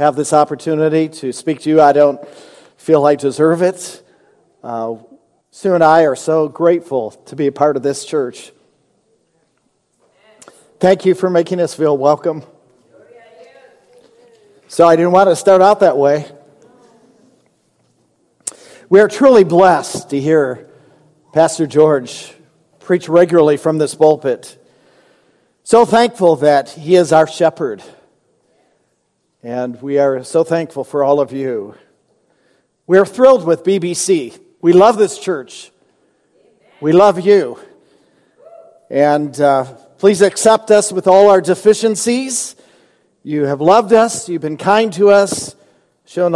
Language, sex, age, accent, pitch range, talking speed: English, male, 50-69, American, 150-200 Hz, 135 wpm